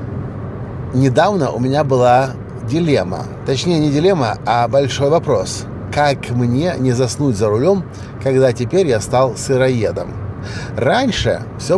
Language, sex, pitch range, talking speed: Russian, male, 120-150 Hz, 120 wpm